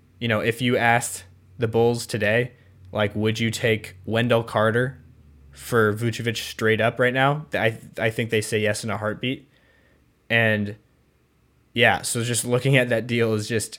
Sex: male